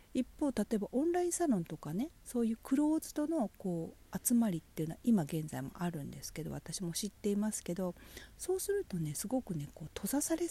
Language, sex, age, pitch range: Japanese, female, 40-59, 140-230 Hz